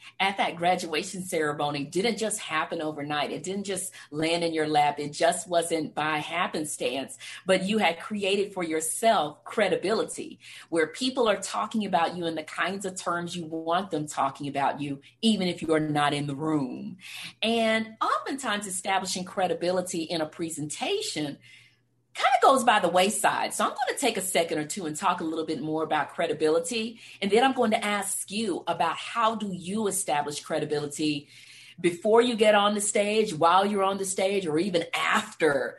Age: 40-59